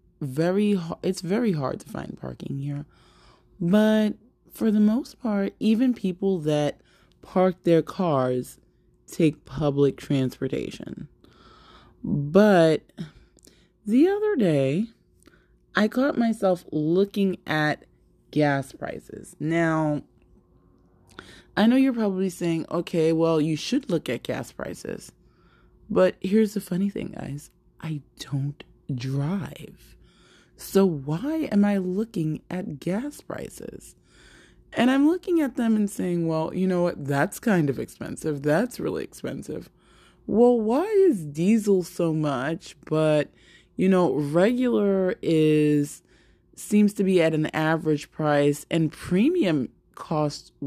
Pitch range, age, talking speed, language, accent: 150-210 Hz, 20-39, 120 wpm, English, American